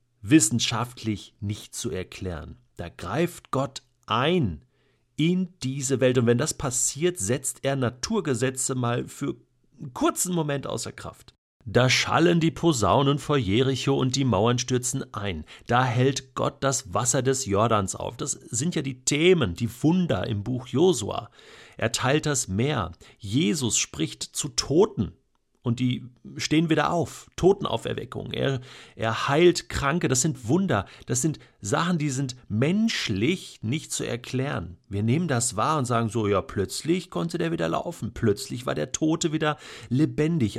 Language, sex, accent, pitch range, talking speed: German, male, German, 115-150 Hz, 150 wpm